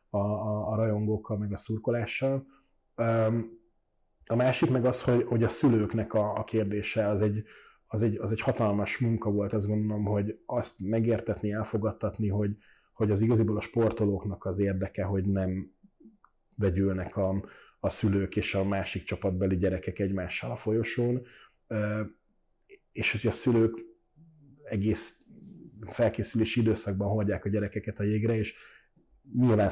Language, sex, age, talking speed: Hungarian, male, 30-49, 135 wpm